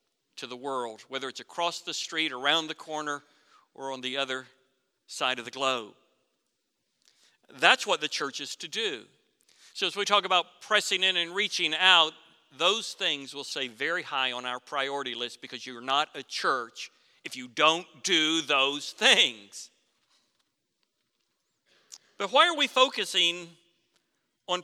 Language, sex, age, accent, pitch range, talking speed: English, male, 50-69, American, 135-200 Hz, 155 wpm